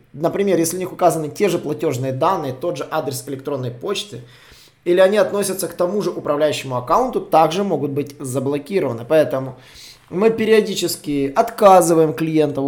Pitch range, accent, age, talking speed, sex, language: 135-190 Hz, native, 20-39, 145 wpm, male, Russian